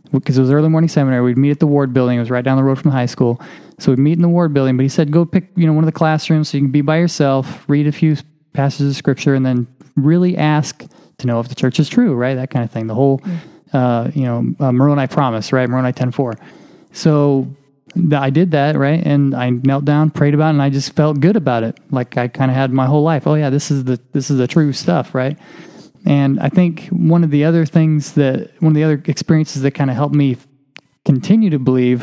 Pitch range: 135-160 Hz